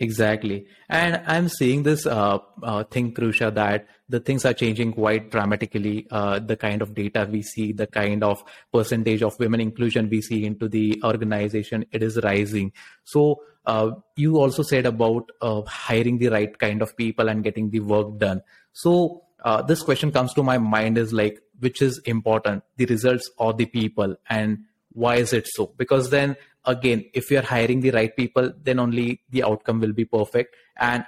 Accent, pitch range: Indian, 110-125 Hz